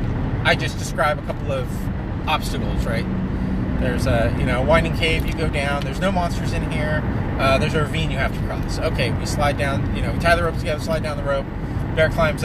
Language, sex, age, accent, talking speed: English, male, 30-49, American, 225 wpm